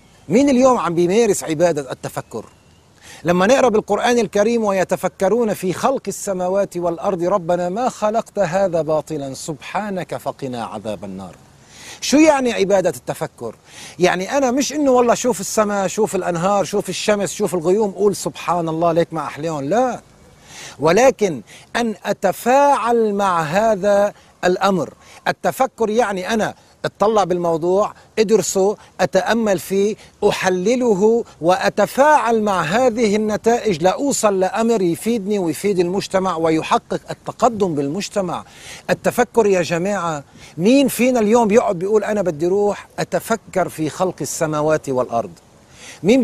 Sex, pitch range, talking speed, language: male, 170-215 Hz, 120 wpm, Arabic